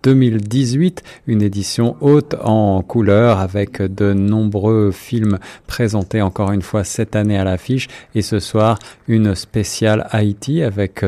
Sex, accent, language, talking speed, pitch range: male, French, French, 135 wpm, 95-115 Hz